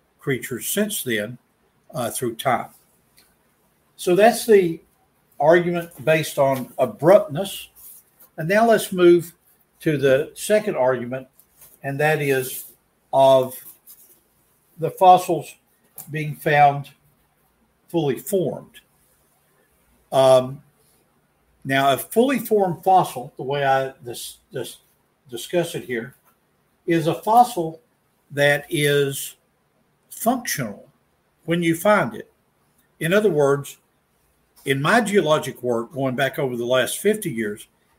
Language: English